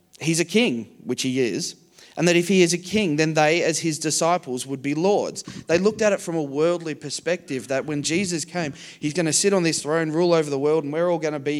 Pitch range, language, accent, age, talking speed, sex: 140-175 Hz, English, Australian, 20-39, 260 wpm, male